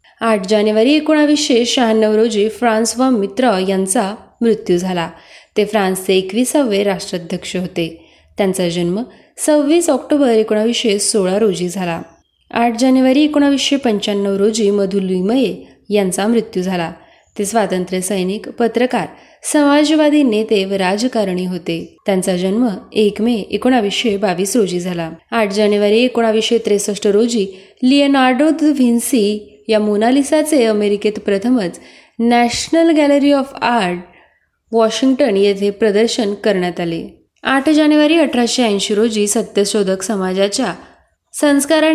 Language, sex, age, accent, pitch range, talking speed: Marathi, female, 20-39, native, 195-250 Hz, 105 wpm